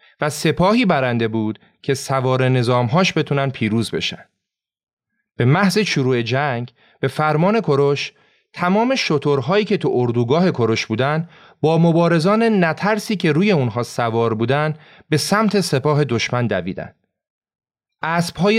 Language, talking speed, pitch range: Persian, 125 wpm, 125-165 Hz